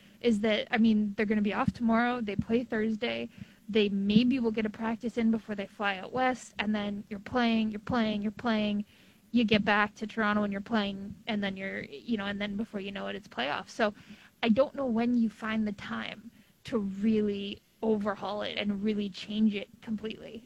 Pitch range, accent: 205-230 Hz, American